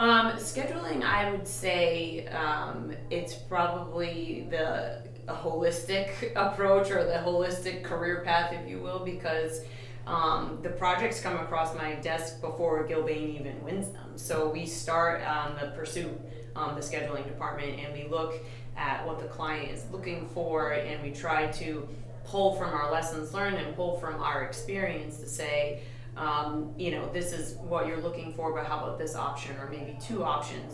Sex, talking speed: female, 170 wpm